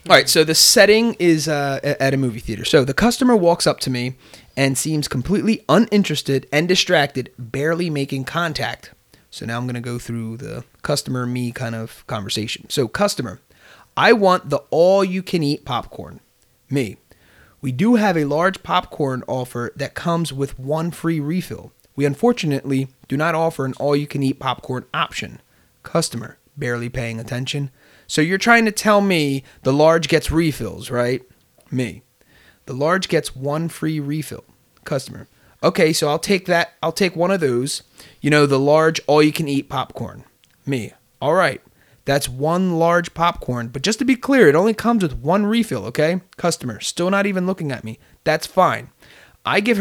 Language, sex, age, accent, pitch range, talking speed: English, male, 30-49, American, 130-175 Hz, 165 wpm